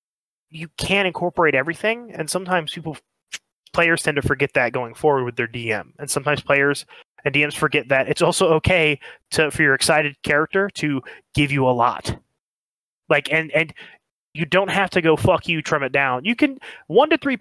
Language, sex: English, male